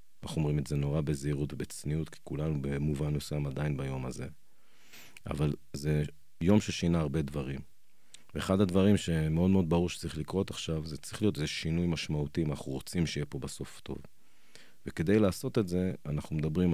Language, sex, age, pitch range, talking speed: Hebrew, male, 40-59, 75-105 Hz, 160 wpm